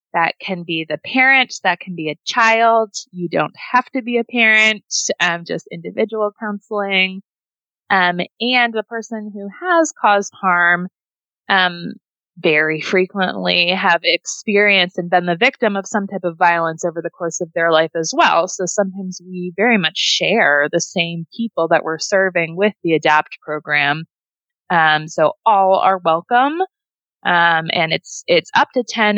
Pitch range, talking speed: 165-210 Hz, 160 wpm